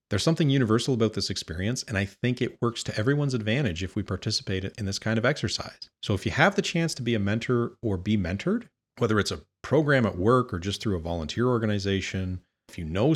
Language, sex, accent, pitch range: English, male, American, 95-130 Hz